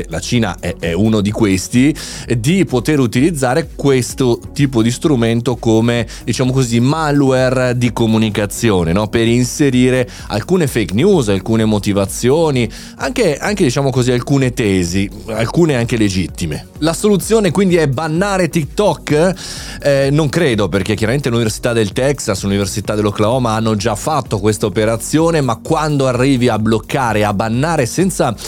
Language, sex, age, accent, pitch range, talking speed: Italian, male, 30-49, native, 105-135 Hz, 135 wpm